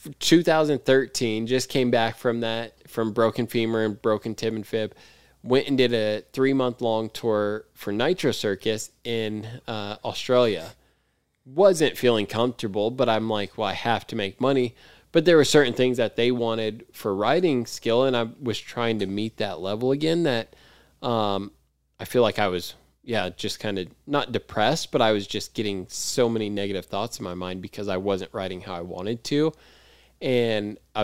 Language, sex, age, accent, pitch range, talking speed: English, male, 20-39, American, 105-125 Hz, 185 wpm